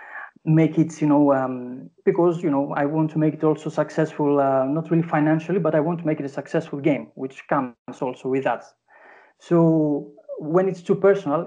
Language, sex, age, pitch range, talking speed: English, male, 30-49, 140-175 Hz, 200 wpm